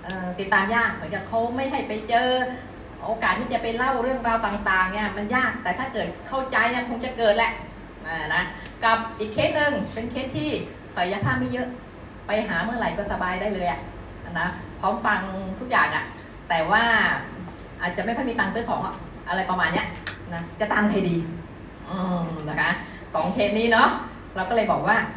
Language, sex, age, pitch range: Thai, female, 20-39, 180-225 Hz